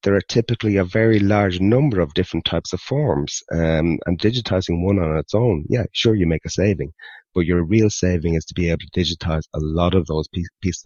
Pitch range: 80-100 Hz